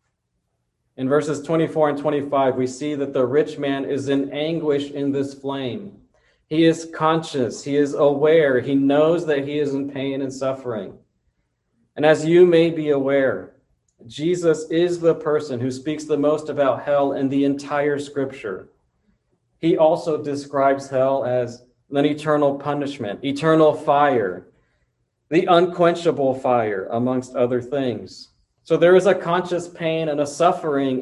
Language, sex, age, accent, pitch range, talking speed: English, male, 40-59, American, 135-155 Hz, 150 wpm